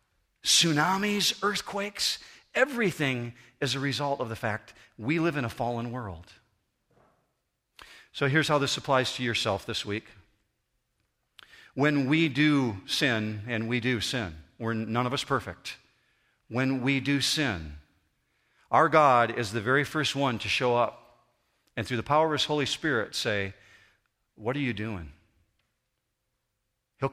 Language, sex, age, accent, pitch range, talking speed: English, male, 50-69, American, 105-145 Hz, 145 wpm